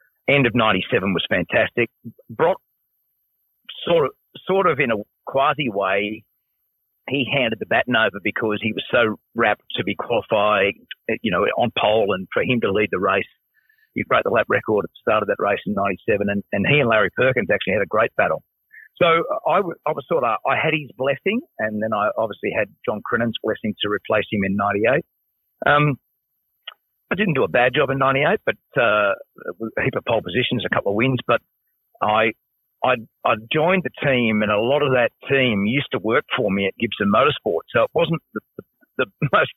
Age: 50-69